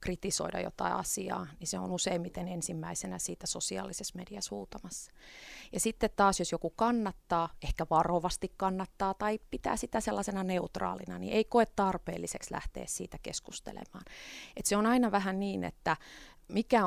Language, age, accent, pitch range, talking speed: Finnish, 30-49, native, 165-195 Hz, 140 wpm